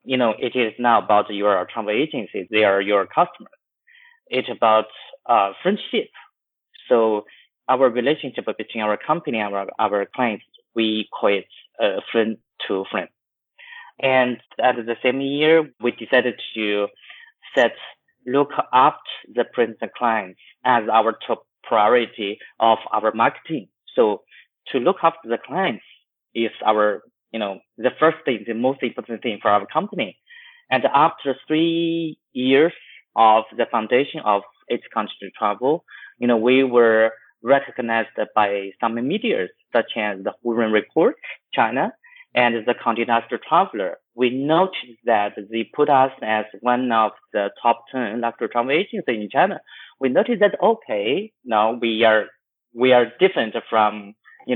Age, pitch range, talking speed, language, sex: 30-49, 110-140 Hz, 145 wpm, English, male